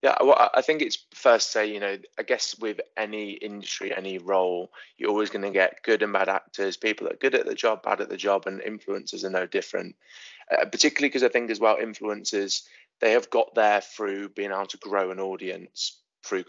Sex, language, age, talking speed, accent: male, English, 20-39, 220 wpm, British